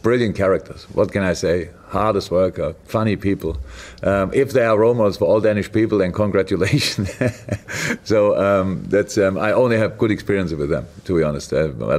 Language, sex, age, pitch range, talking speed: English, male, 40-59, 90-100 Hz, 185 wpm